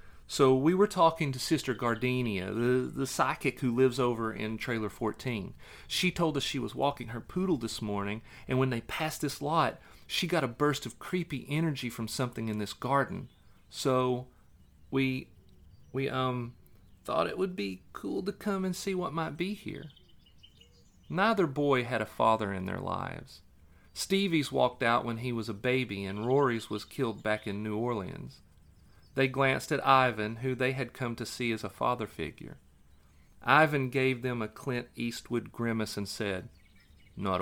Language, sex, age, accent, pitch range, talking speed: English, male, 40-59, American, 95-135 Hz, 175 wpm